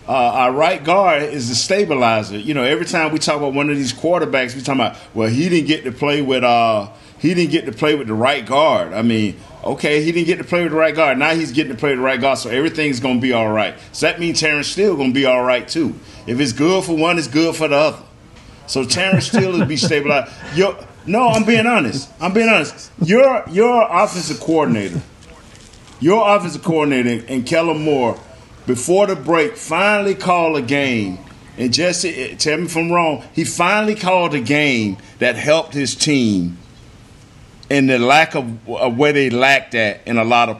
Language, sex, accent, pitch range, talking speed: English, male, American, 120-160 Hz, 215 wpm